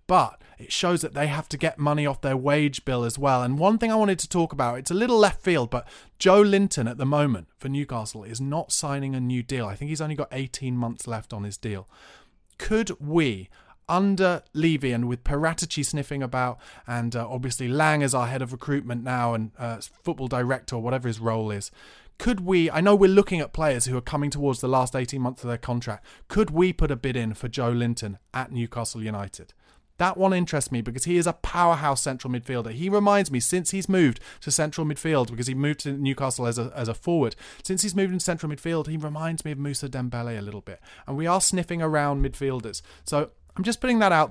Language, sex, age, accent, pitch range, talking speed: English, male, 30-49, British, 125-170 Hz, 230 wpm